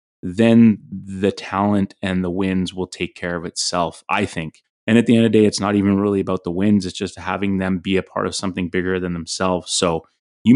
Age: 30-49